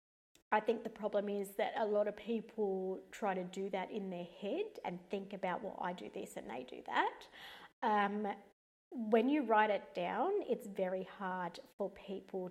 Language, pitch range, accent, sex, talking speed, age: English, 195-250 Hz, Australian, female, 185 wpm, 30-49